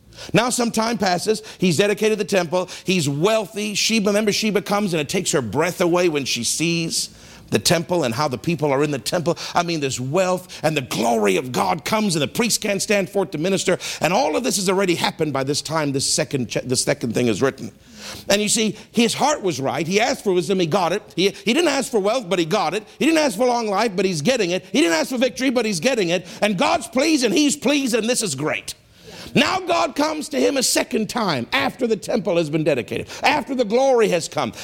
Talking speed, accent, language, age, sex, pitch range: 245 wpm, American, English, 50-69, male, 175-245 Hz